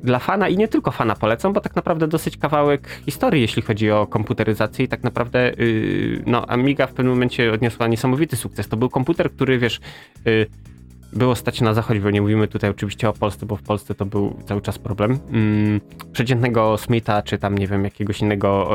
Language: Polish